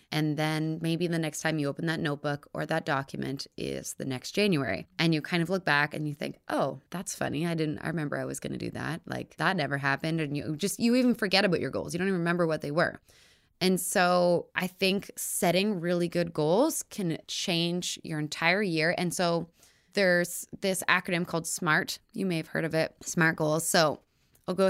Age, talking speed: 20-39, 215 wpm